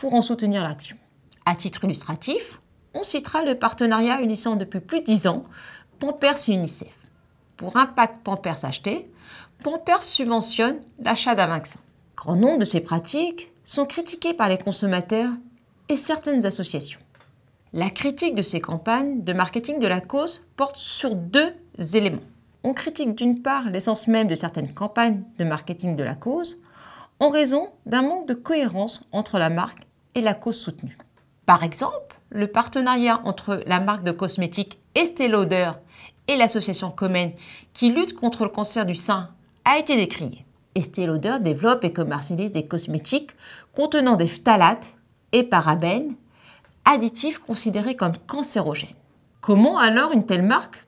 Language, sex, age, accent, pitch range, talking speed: French, female, 40-59, French, 180-270 Hz, 150 wpm